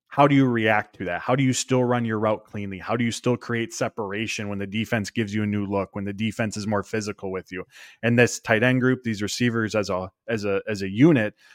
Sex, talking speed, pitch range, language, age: male, 260 wpm, 105-125 Hz, English, 20-39